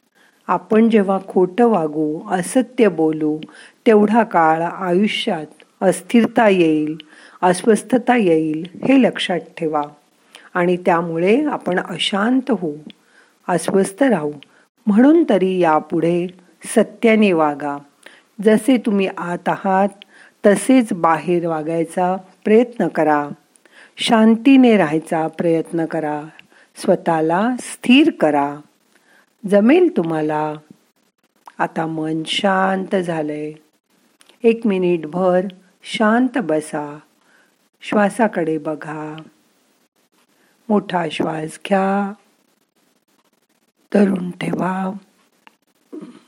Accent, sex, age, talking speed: native, female, 50-69, 75 wpm